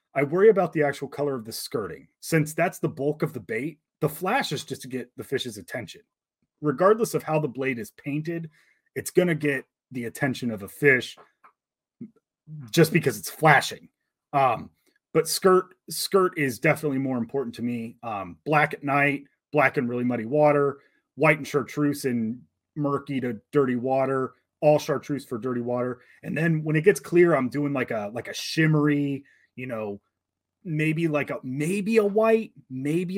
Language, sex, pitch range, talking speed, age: English, male, 130-160 Hz, 180 wpm, 30-49